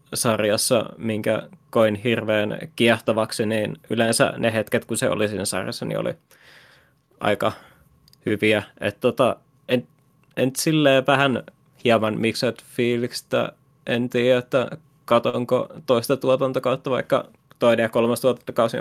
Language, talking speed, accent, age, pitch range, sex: Finnish, 125 wpm, native, 20-39, 110-135 Hz, male